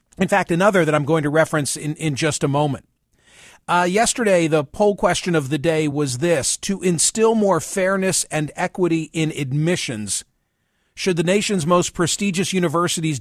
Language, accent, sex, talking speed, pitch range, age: English, American, male, 170 wpm, 150-180 Hz, 40-59